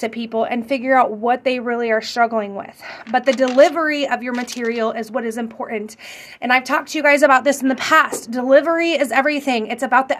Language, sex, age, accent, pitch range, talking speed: English, female, 30-49, American, 235-285 Hz, 225 wpm